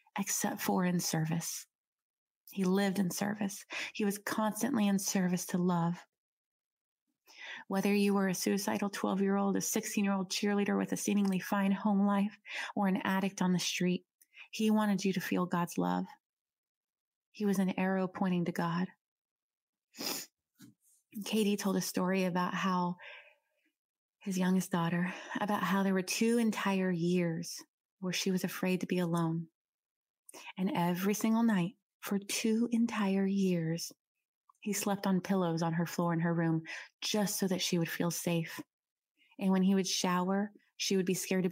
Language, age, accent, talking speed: English, 30-49, American, 155 wpm